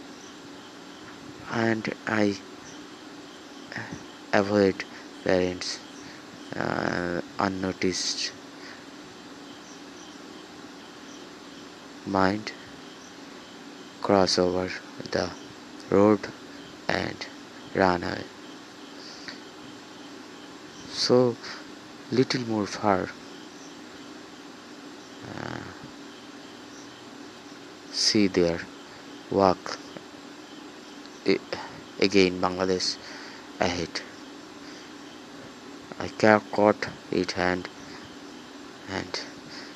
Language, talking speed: Bengali, 50 wpm